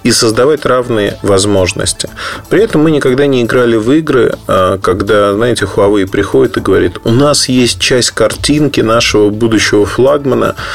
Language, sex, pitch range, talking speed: Russian, male, 100-135 Hz, 145 wpm